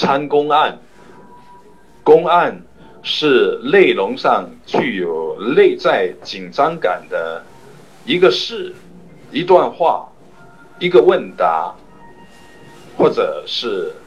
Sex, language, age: male, Chinese, 60-79